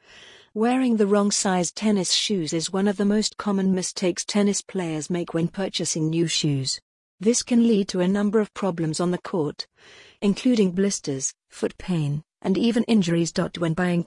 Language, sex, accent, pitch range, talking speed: English, female, British, 170-205 Hz, 170 wpm